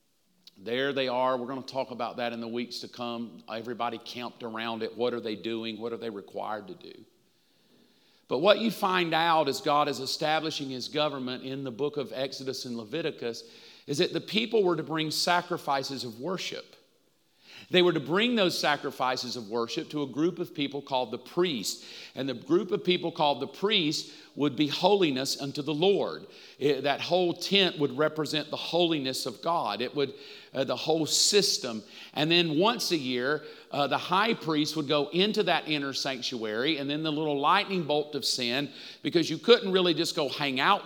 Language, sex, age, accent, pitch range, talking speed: English, male, 50-69, American, 135-180 Hz, 195 wpm